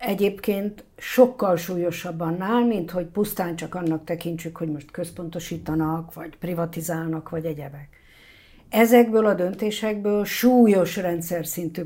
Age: 50-69